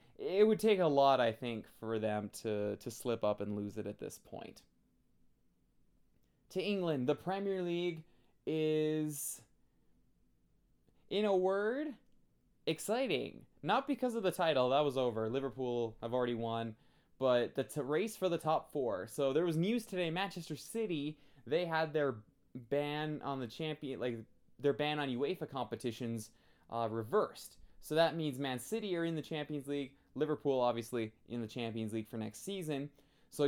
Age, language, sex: 20-39, English, male